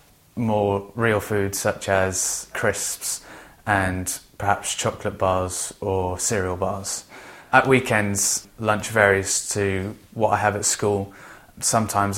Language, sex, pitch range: English, male, 95-105 Hz